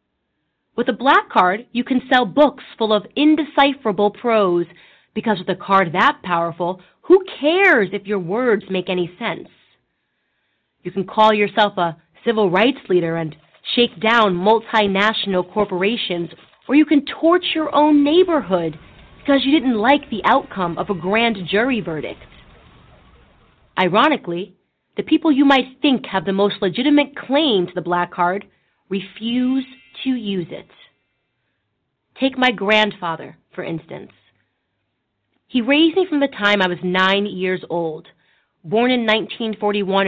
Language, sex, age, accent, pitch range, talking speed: English, female, 30-49, American, 185-255 Hz, 145 wpm